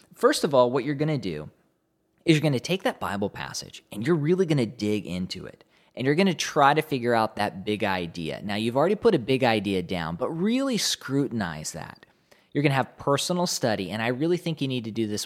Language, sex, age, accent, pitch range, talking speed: English, male, 20-39, American, 110-155 Hz, 245 wpm